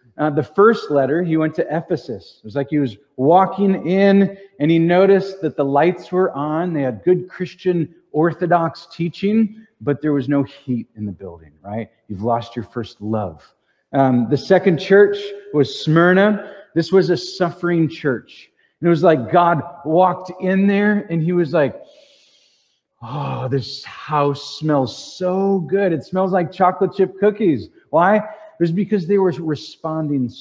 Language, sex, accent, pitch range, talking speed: English, male, American, 130-180 Hz, 170 wpm